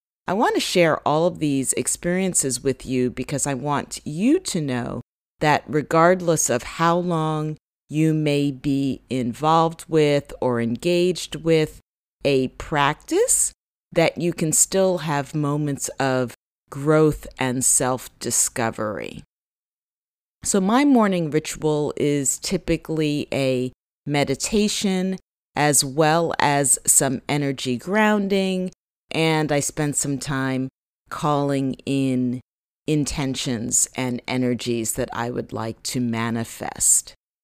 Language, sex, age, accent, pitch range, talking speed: English, female, 40-59, American, 135-180 Hz, 115 wpm